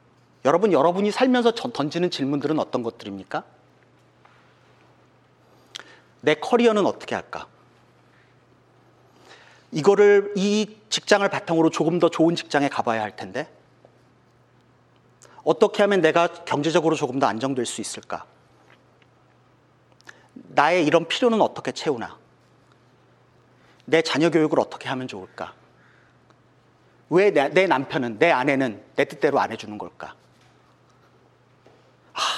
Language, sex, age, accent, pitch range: Korean, male, 40-59, native, 135-185 Hz